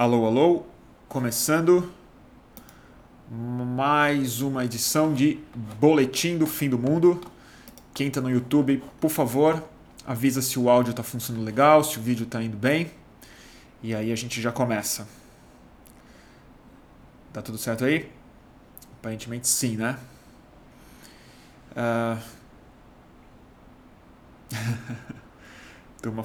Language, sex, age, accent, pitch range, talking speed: Portuguese, male, 20-39, Brazilian, 120-150 Hz, 105 wpm